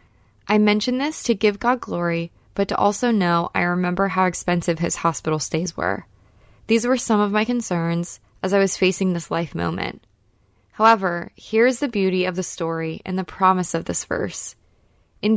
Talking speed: 185 wpm